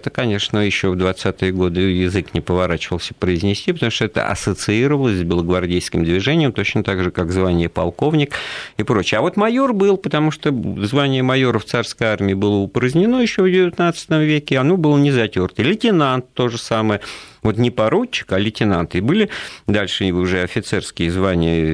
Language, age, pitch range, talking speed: Russian, 50-69, 85-120 Hz, 170 wpm